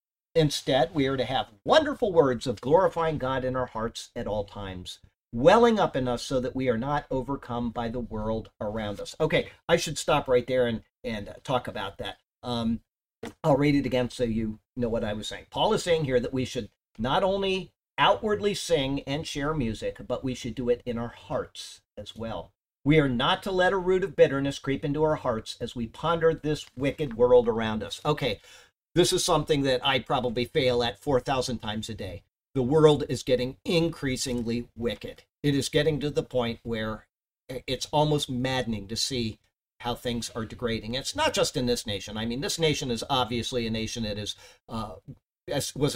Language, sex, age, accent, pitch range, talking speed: English, male, 50-69, American, 115-145 Hz, 195 wpm